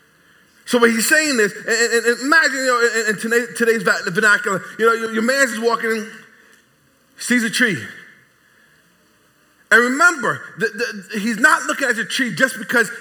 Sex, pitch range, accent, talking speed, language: male, 200-275 Hz, American, 150 wpm, English